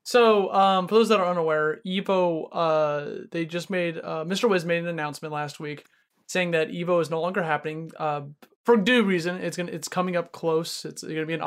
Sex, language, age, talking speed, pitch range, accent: male, English, 20-39, 225 wpm, 160-210 Hz, American